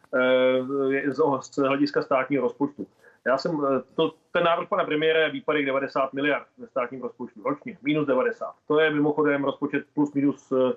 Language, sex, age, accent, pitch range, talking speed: Czech, male, 30-49, native, 135-155 Hz, 150 wpm